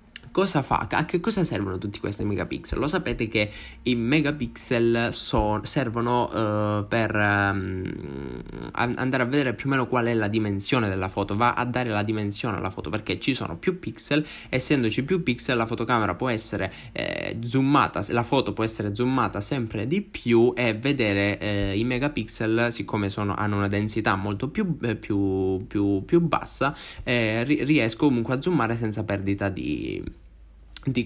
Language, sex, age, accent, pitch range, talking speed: Italian, male, 20-39, native, 105-140 Hz, 155 wpm